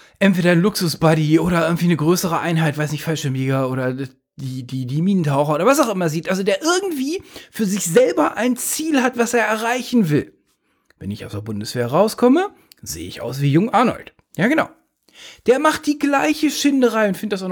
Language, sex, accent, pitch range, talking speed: English, male, German, 145-220 Hz, 195 wpm